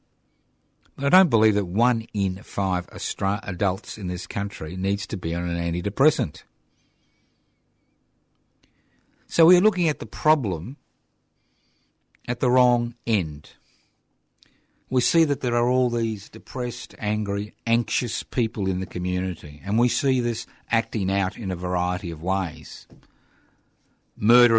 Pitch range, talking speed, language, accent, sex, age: 95-125 Hz, 130 wpm, English, Australian, male, 50-69